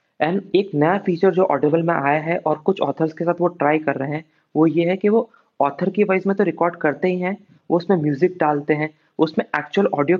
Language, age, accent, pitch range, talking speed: English, 30-49, Indian, 150-190 Hz, 240 wpm